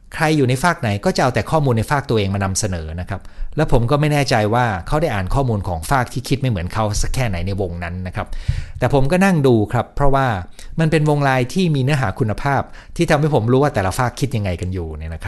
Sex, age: male, 60-79